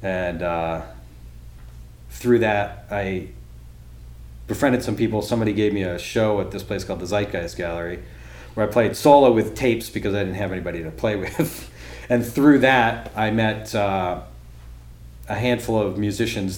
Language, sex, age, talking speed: English, male, 40-59, 160 wpm